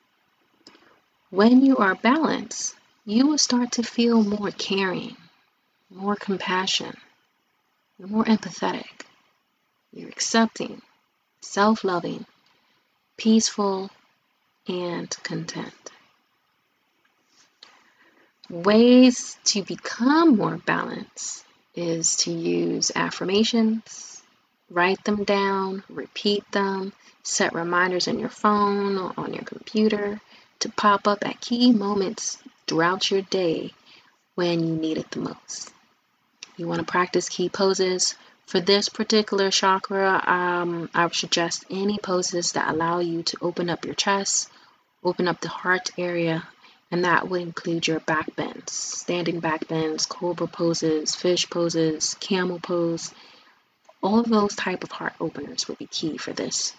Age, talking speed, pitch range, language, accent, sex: 30-49, 115 wpm, 175-220 Hz, English, American, female